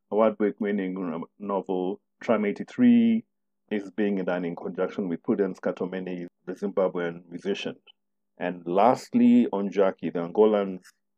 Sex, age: male, 50-69